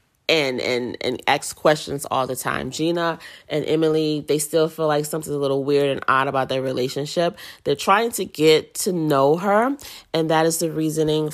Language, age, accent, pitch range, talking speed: English, 30-49, American, 145-165 Hz, 190 wpm